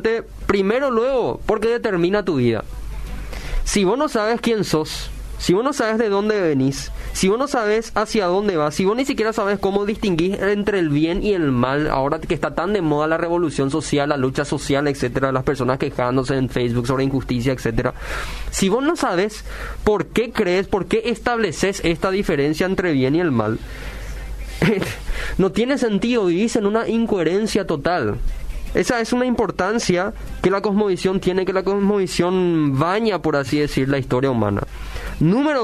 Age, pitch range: 20-39, 150-225 Hz